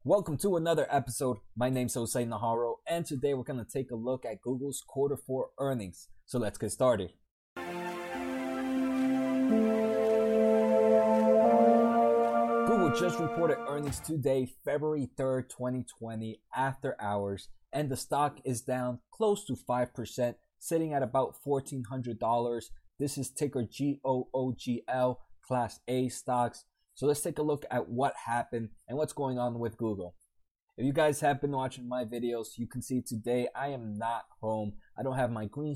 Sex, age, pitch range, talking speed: male, 20-39, 115-135 Hz, 150 wpm